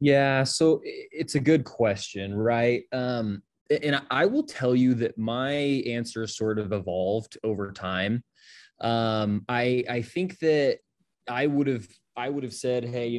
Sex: male